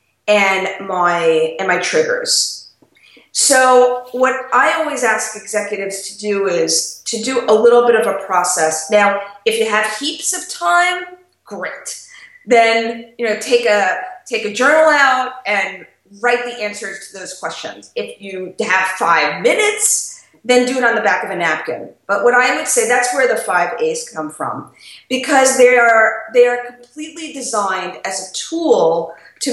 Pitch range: 195-260 Hz